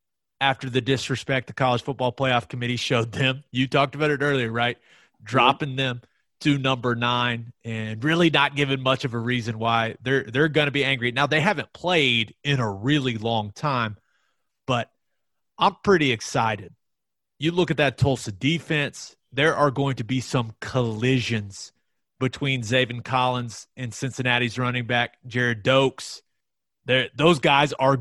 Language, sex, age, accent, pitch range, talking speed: English, male, 30-49, American, 115-140 Hz, 160 wpm